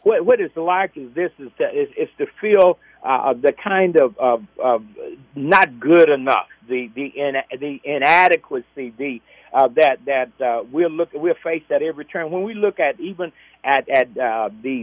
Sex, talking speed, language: male, 200 wpm, English